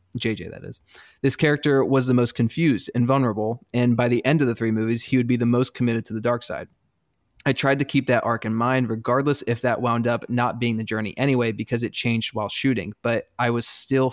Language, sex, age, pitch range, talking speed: English, male, 20-39, 115-130 Hz, 240 wpm